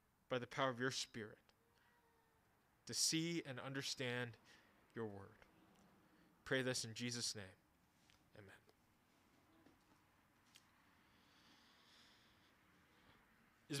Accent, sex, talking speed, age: American, male, 85 wpm, 20-39